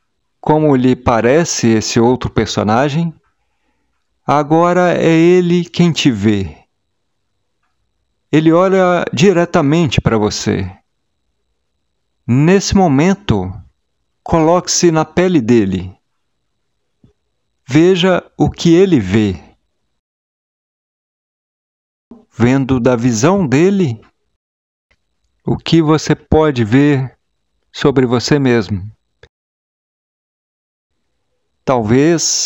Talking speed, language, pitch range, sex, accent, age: 75 wpm, Portuguese, 115-170 Hz, male, Brazilian, 50-69